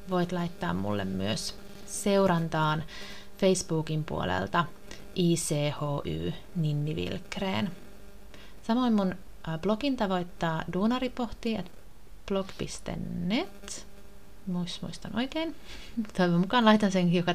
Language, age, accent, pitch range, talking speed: Finnish, 30-49, native, 160-200 Hz, 75 wpm